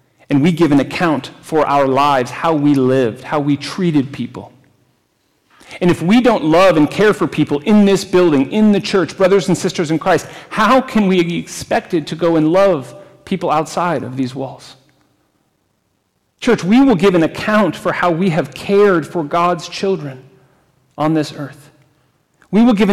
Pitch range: 165-230 Hz